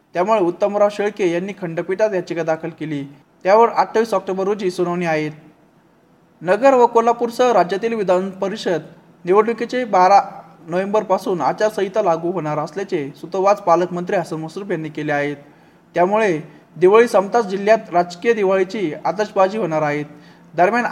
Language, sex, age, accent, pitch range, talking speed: Marathi, male, 20-39, native, 175-215 Hz, 130 wpm